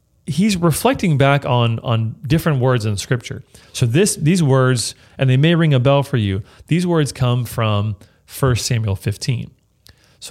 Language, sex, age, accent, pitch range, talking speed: English, male, 30-49, American, 105-130 Hz, 175 wpm